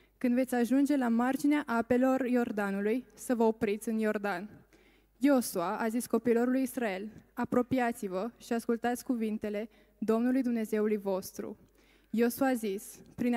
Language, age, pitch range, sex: Romanian, 20-39, 220-250 Hz, female